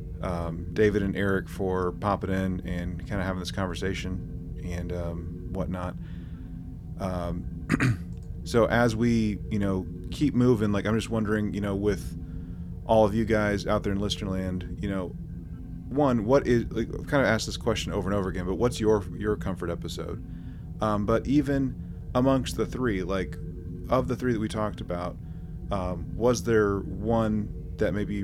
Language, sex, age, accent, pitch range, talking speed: English, male, 30-49, American, 90-110 Hz, 170 wpm